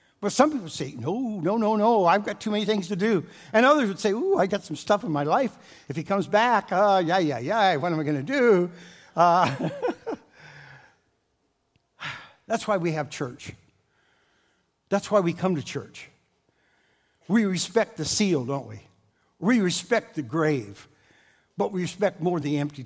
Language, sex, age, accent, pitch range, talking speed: English, male, 60-79, American, 145-205 Hz, 185 wpm